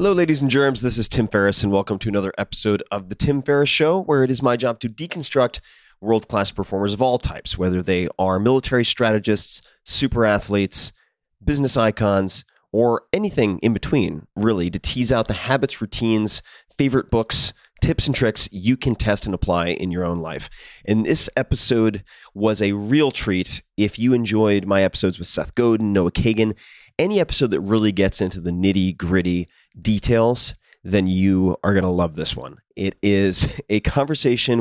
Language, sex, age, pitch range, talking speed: English, male, 30-49, 95-125 Hz, 180 wpm